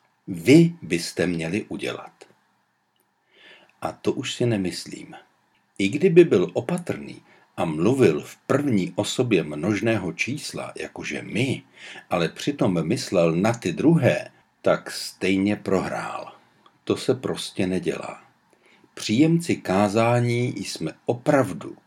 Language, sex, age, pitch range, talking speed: Czech, male, 60-79, 95-135 Hz, 105 wpm